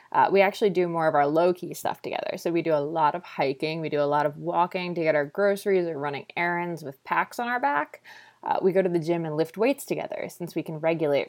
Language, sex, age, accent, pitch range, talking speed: English, female, 20-39, American, 155-215 Hz, 260 wpm